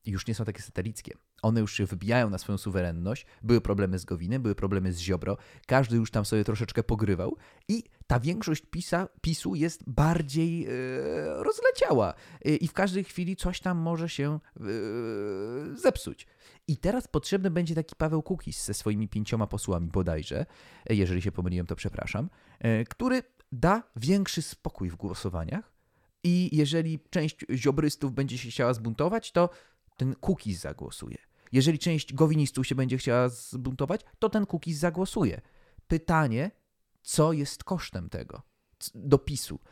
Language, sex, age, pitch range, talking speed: Polish, male, 30-49, 100-160 Hz, 150 wpm